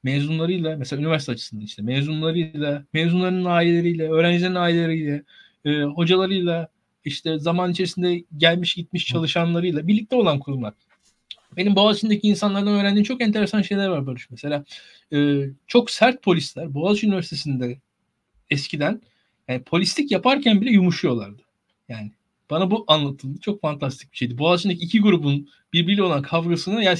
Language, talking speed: Turkish, 130 wpm